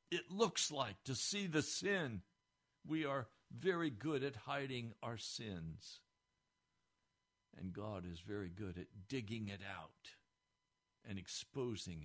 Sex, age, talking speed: male, 60-79, 130 wpm